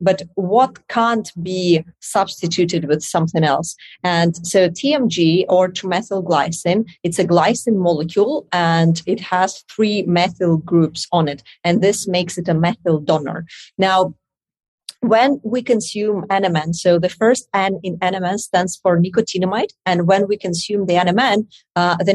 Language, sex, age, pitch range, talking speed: English, female, 30-49, 175-210 Hz, 145 wpm